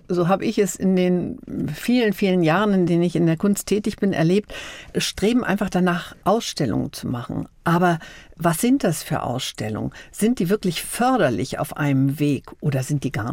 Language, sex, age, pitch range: German, female, 50-69, 150-200 Hz